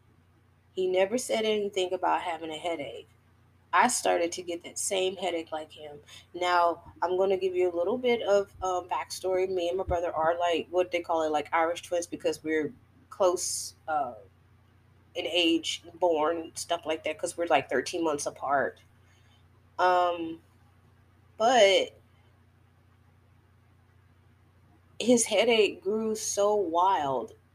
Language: English